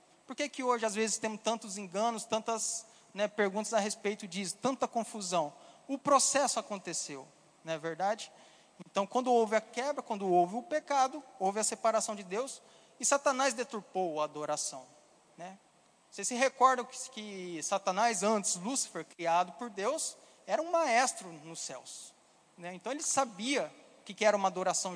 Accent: Brazilian